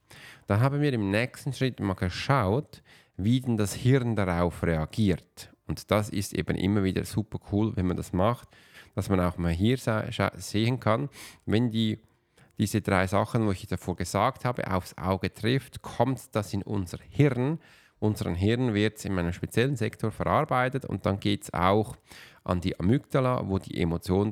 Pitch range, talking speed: 95-120 Hz, 180 wpm